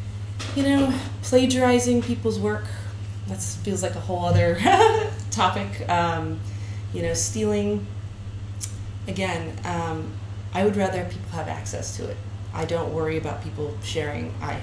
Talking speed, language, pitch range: 135 wpm, English, 100-105 Hz